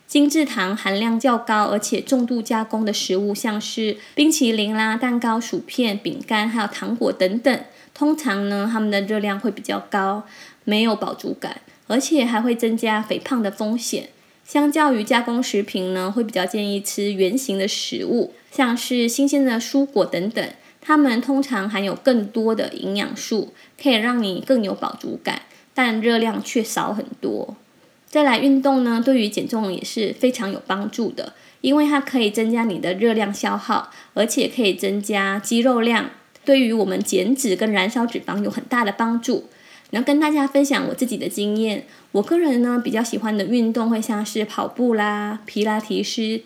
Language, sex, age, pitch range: Chinese, female, 10-29, 210-260 Hz